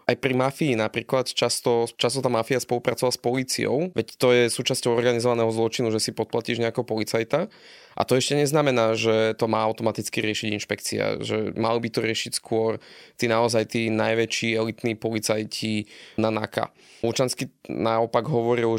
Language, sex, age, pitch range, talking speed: Slovak, male, 20-39, 110-120 Hz, 155 wpm